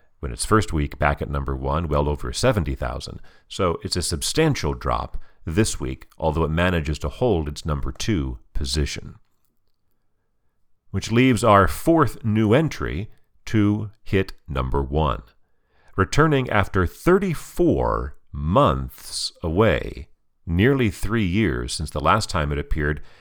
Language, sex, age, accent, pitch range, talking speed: English, male, 40-59, American, 75-105 Hz, 130 wpm